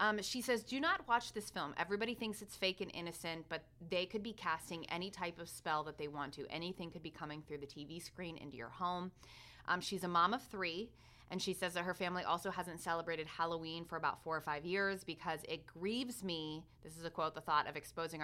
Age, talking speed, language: 20-39, 235 wpm, English